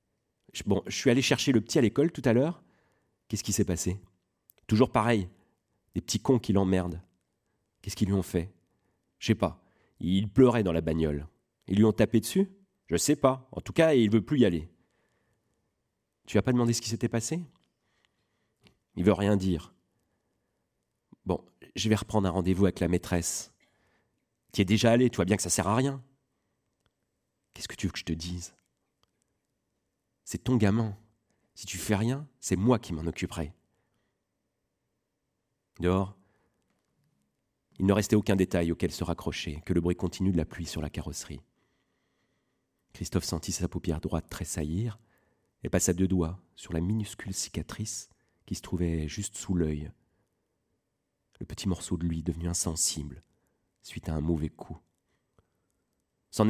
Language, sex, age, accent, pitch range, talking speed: French, male, 40-59, French, 90-115 Hz, 170 wpm